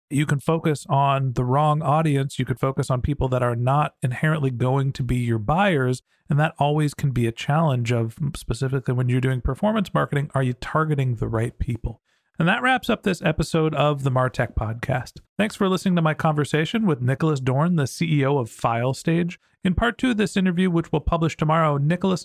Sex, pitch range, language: male, 135-185 Hz, English